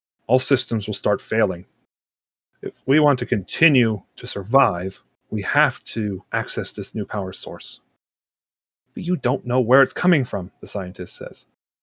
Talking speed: 155 wpm